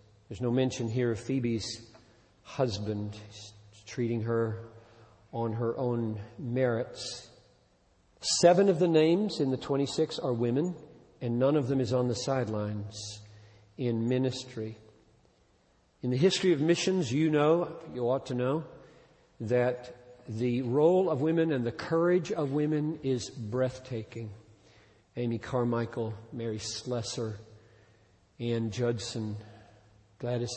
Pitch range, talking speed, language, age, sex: 110-130 Hz, 120 wpm, English, 50-69, male